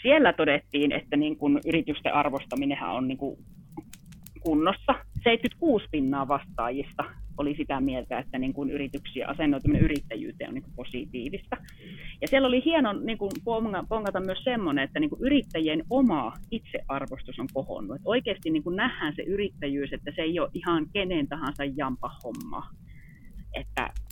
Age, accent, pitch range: 30-49, native, 145-235 Hz